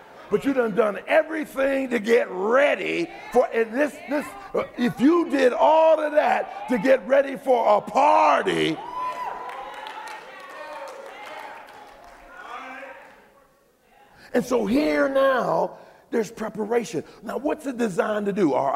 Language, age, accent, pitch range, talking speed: English, 50-69, American, 155-250 Hz, 120 wpm